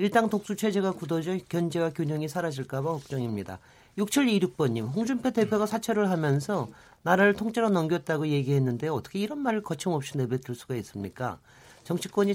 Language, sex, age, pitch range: Korean, male, 40-59, 140-200 Hz